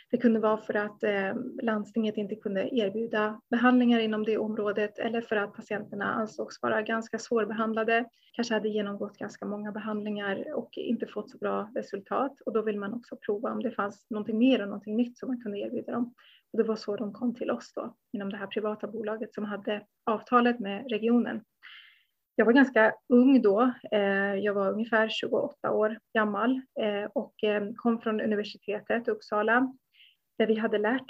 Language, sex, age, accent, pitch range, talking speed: Swedish, female, 30-49, native, 210-235 Hz, 180 wpm